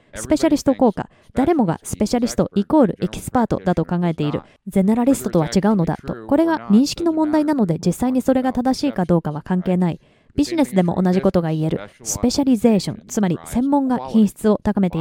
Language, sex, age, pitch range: Japanese, female, 20-39, 180-245 Hz